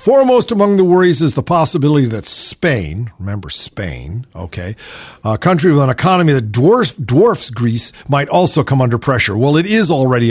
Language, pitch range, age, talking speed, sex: English, 115-155 Hz, 50-69, 175 wpm, male